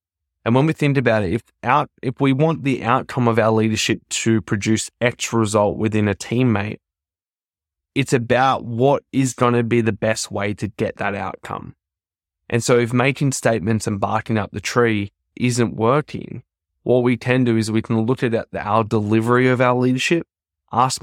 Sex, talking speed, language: male, 185 wpm, English